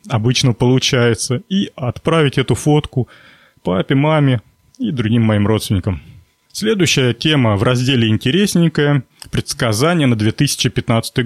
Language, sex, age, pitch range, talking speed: Russian, male, 30-49, 115-145 Hz, 105 wpm